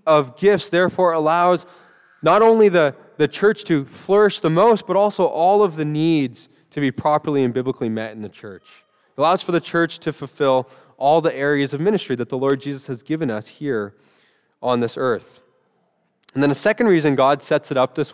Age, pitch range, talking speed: 20-39, 145-180 Hz, 200 wpm